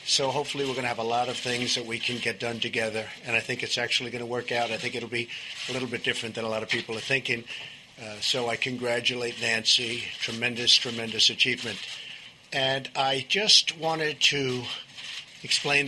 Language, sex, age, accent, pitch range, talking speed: English, male, 50-69, American, 120-150 Hz, 205 wpm